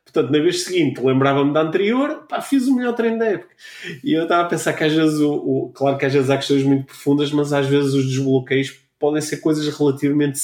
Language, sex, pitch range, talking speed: Portuguese, male, 125-150 Hz, 235 wpm